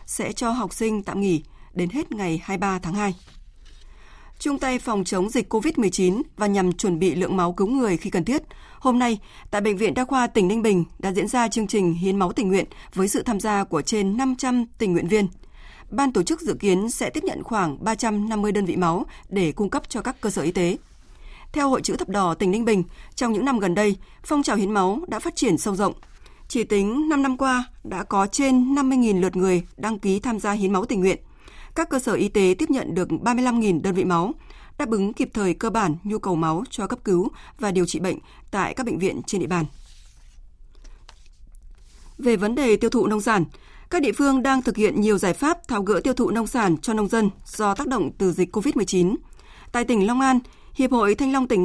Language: Vietnamese